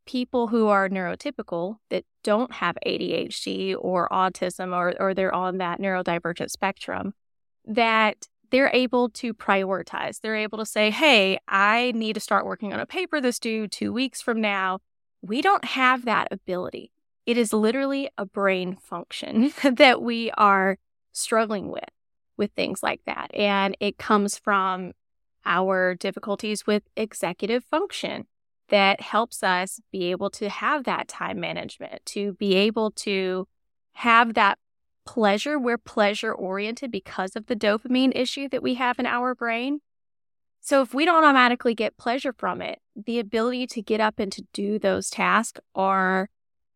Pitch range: 195-240 Hz